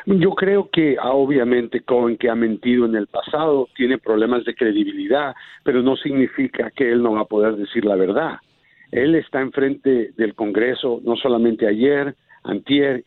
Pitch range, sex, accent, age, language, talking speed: 120-155 Hz, male, Mexican, 50-69, Spanish, 165 wpm